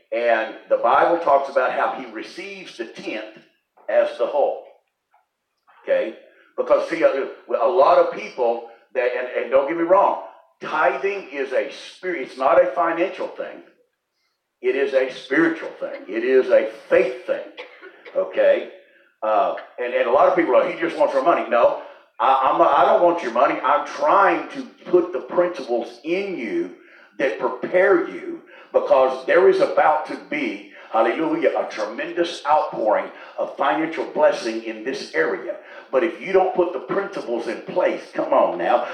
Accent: American